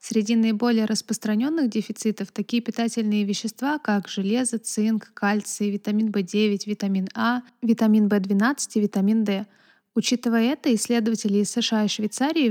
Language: Russian